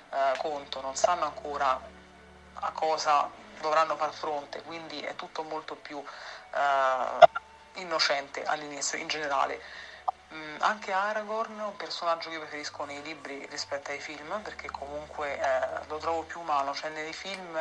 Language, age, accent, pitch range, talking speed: Italian, 40-59, native, 145-175 Hz, 145 wpm